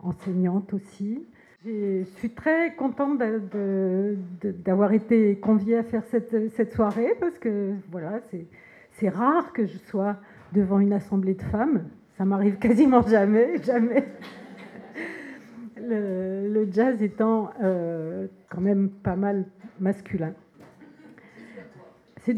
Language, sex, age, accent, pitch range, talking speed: French, female, 50-69, French, 190-235 Hz, 125 wpm